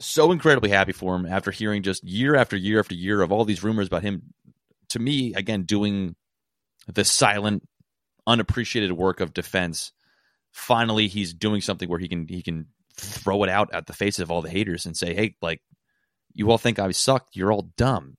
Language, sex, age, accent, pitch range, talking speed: English, male, 30-49, American, 90-110 Hz, 200 wpm